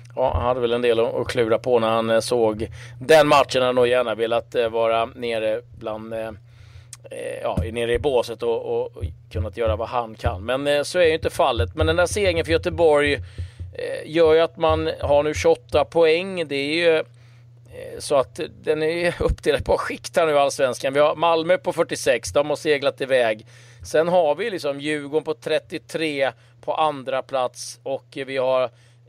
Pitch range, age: 120-150 Hz, 30-49